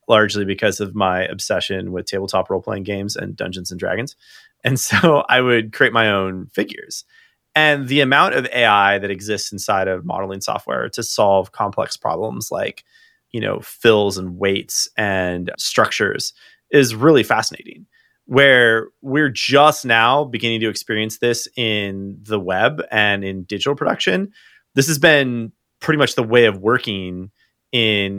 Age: 30-49